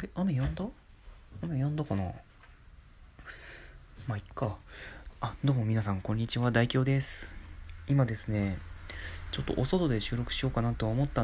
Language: Japanese